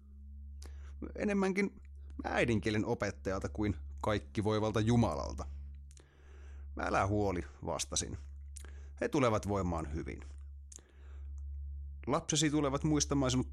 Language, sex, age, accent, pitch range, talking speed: Finnish, male, 30-49, native, 70-105 Hz, 80 wpm